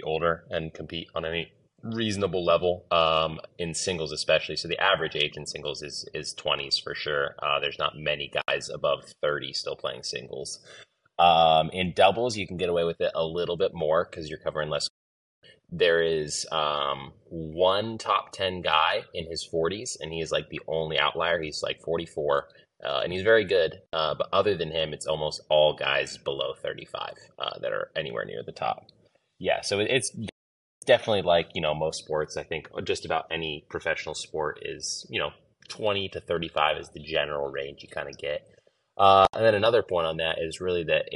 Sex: male